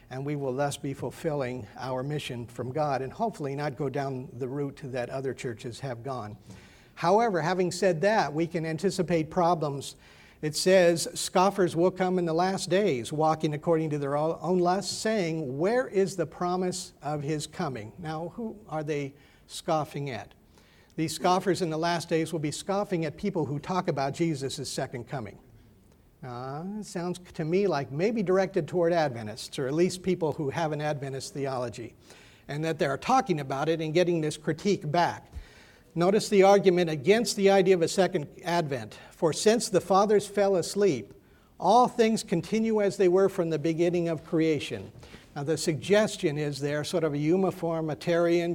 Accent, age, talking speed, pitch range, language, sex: American, 50-69, 175 wpm, 140-185 Hz, English, male